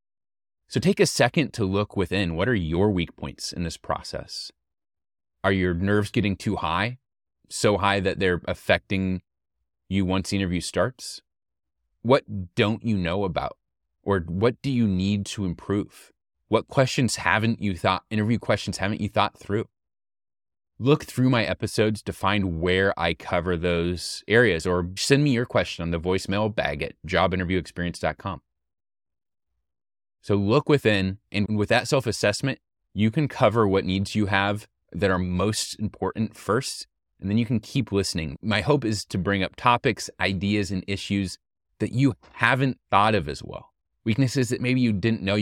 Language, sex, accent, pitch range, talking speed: English, male, American, 90-110 Hz, 165 wpm